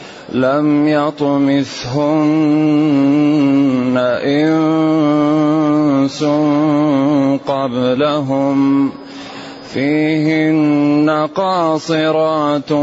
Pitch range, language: 135-155 Hz, Arabic